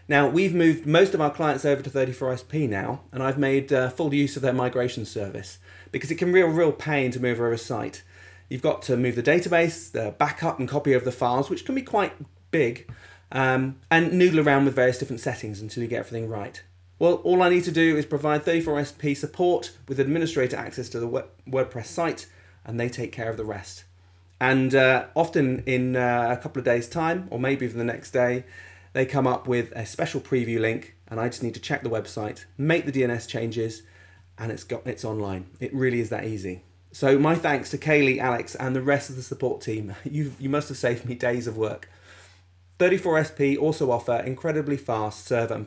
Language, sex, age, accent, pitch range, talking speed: English, male, 30-49, British, 110-145 Hz, 215 wpm